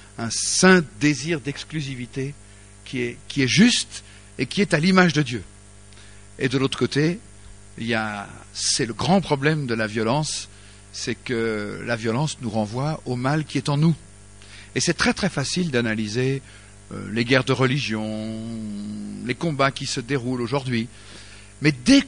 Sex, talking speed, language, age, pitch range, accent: male, 165 wpm, English, 50-69, 105-155 Hz, French